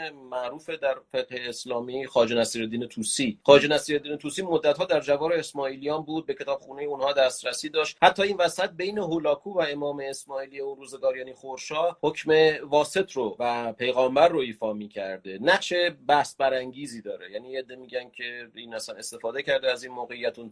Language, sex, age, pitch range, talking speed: Persian, male, 30-49, 120-150 Hz, 165 wpm